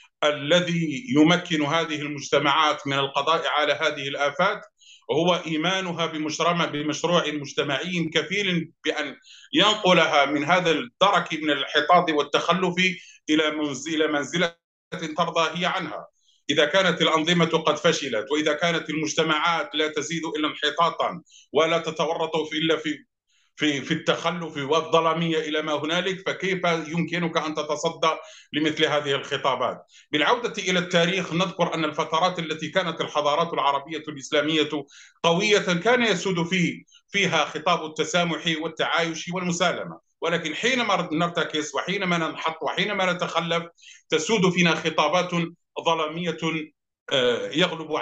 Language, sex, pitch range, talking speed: Arabic, male, 150-175 Hz, 115 wpm